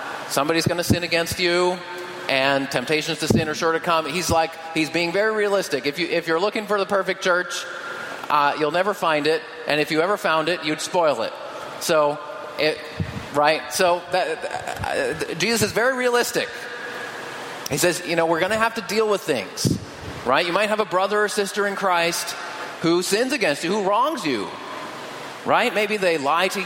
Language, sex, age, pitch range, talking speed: English, male, 30-49, 150-195 Hz, 195 wpm